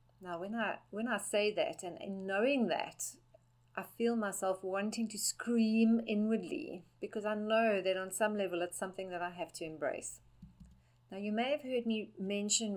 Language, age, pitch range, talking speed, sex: English, 40-59, 175-225 Hz, 185 wpm, female